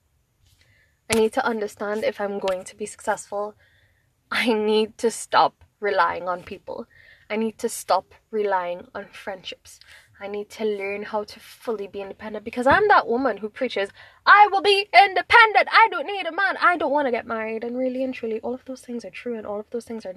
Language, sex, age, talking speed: English, female, 20-39, 210 wpm